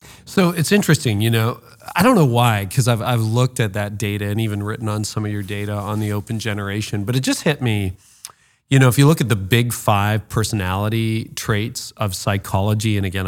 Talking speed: 210 wpm